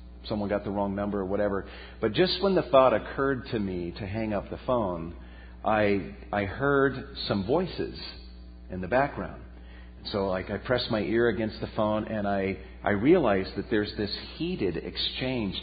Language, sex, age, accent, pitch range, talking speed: English, male, 40-59, American, 95-130 Hz, 175 wpm